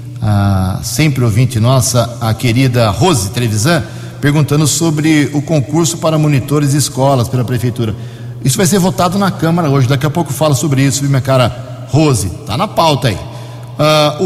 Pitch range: 125-165 Hz